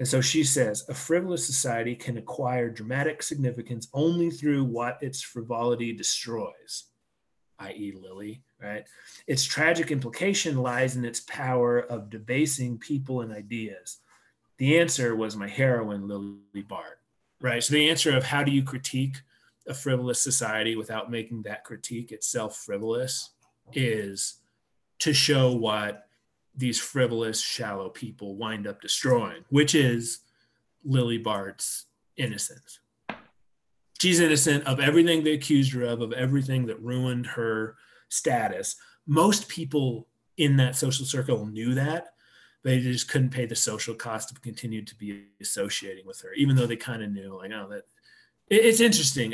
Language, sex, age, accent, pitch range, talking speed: English, male, 30-49, American, 115-145 Hz, 145 wpm